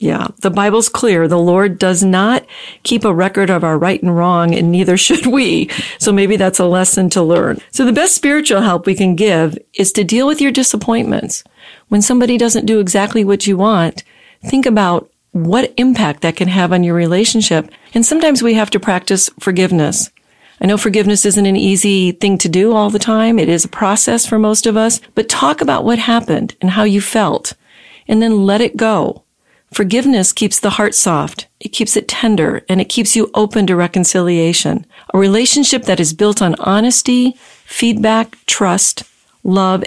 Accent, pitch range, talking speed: American, 185-230 Hz, 190 wpm